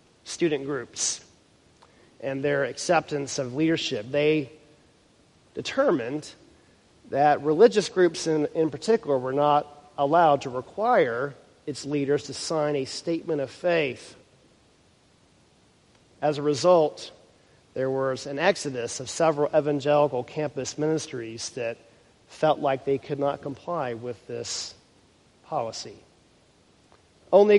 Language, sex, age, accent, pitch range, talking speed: English, male, 40-59, American, 140-180 Hz, 110 wpm